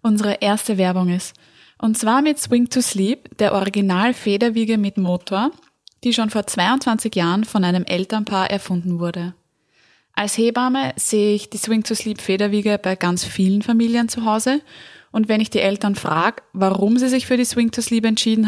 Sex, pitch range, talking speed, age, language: female, 190-230 Hz, 180 wpm, 20-39, German